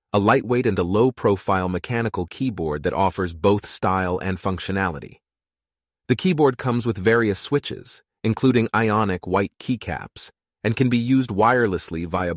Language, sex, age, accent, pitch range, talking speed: English, male, 30-49, American, 95-125 Hz, 140 wpm